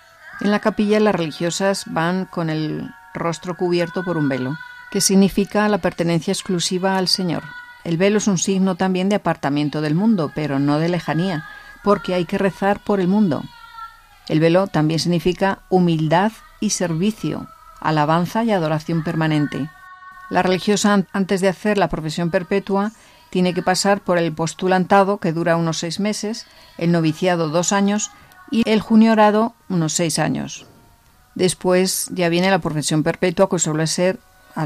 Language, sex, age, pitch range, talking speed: Spanish, female, 50-69, 160-200 Hz, 160 wpm